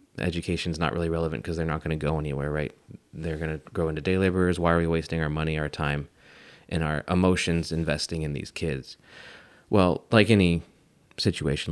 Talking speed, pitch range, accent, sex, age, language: 195 wpm, 80-90 Hz, American, male, 30-49, English